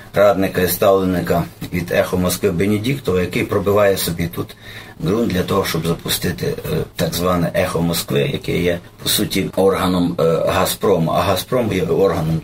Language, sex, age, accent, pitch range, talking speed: Ukrainian, male, 40-59, native, 95-120 Hz, 155 wpm